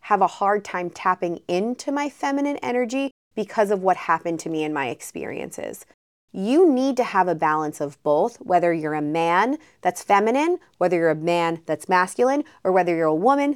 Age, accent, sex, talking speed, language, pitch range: 20-39, American, female, 190 wpm, English, 175-240 Hz